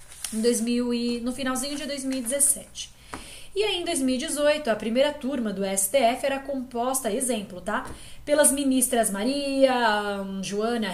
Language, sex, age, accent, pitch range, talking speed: Portuguese, female, 10-29, Brazilian, 225-285 Hz, 130 wpm